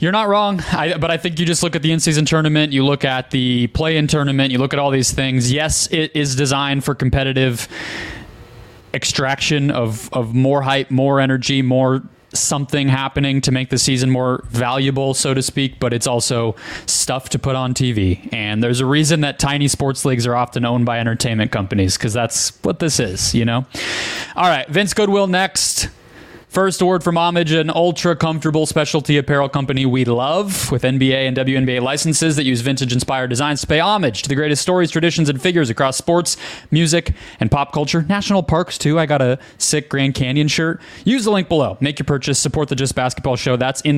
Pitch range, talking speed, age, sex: 125-160 Hz, 200 wpm, 20-39, male